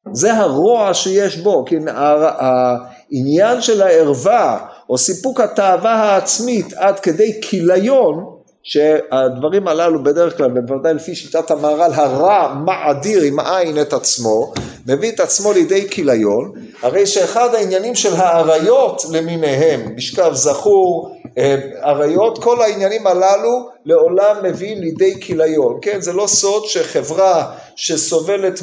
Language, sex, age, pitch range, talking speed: Hebrew, male, 50-69, 160-240 Hz, 120 wpm